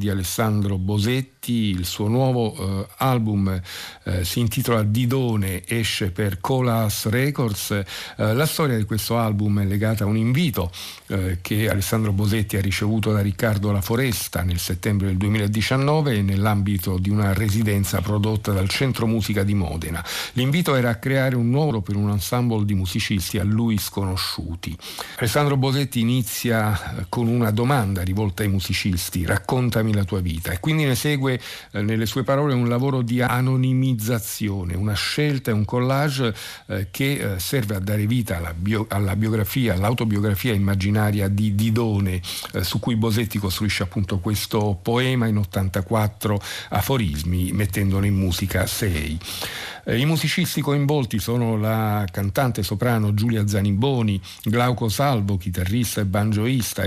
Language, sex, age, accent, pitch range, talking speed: Italian, male, 50-69, native, 100-120 Hz, 150 wpm